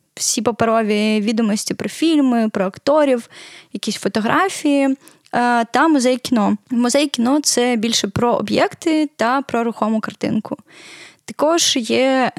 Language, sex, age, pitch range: Ukrainian, female, 10-29, 215-250 Hz